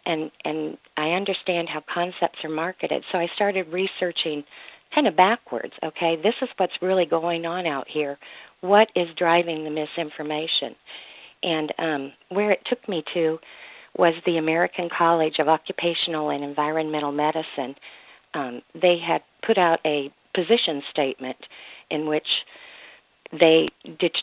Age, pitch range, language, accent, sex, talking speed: 50-69, 150-180 Hz, English, American, female, 140 wpm